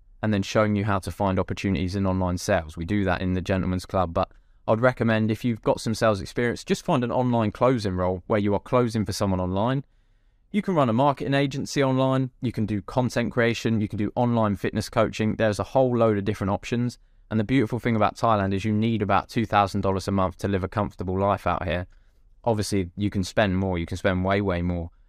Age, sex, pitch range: 20-39, male, 100-125 Hz